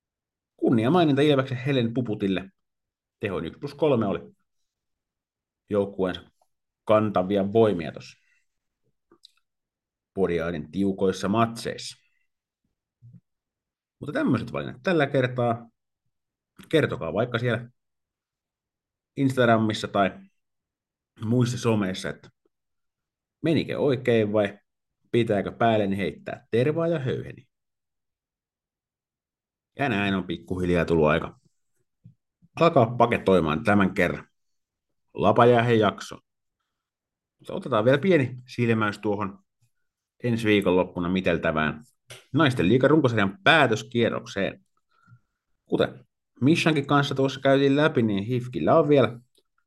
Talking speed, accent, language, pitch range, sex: 85 wpm, native, Finnish, 100-125 Hz, male